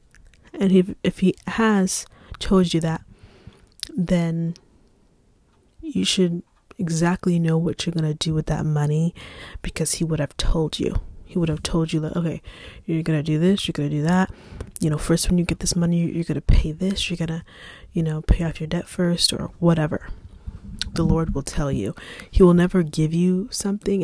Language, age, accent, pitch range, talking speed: English, 20-39, American, 150-180 Hz, 200 wpm